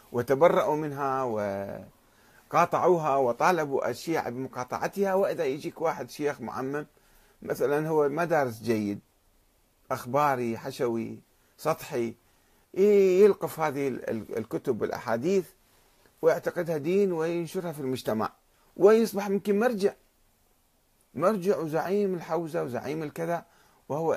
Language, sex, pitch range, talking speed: Arabic, male, 115-170 Hz, 90 wpm